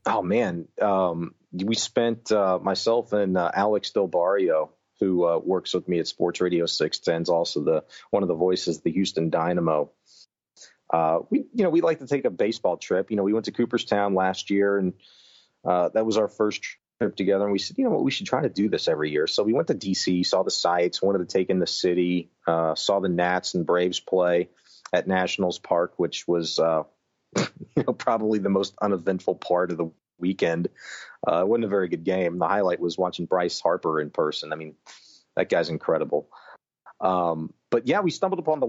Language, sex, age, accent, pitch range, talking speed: English, male, 30-49, American, 85-105 Hz, 210 wpm